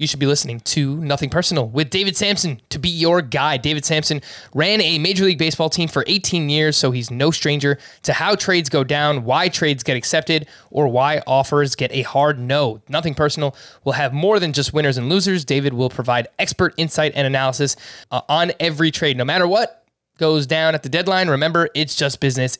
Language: English